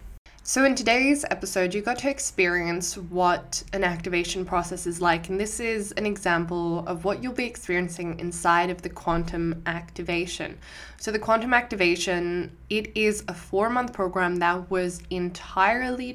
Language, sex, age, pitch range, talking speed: English, female, 10-29, 175-210 Hz, 150 wpm